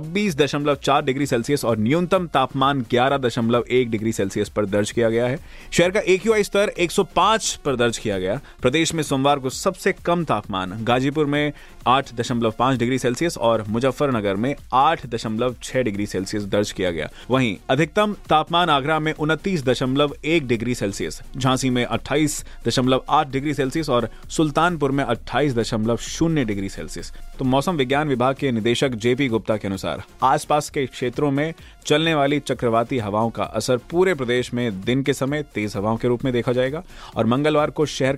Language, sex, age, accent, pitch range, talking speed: Hindi, male, 20-39, native, 115-150 Hz, 125 wpm